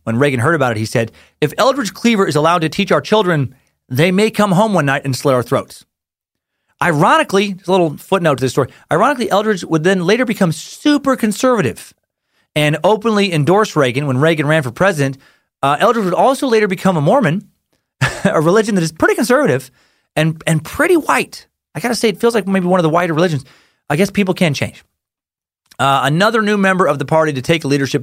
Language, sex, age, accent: English, male, 30-49, American